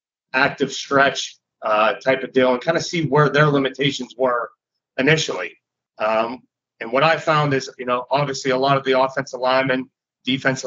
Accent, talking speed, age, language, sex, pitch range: American, 175 wpm, 30-49, English, male, 125-150 Hz